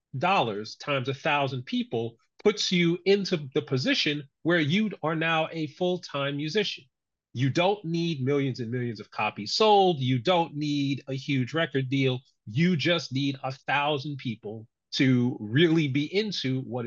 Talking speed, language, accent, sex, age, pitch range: 155 wpm, English, American, male, 40-59, 130-175 Hz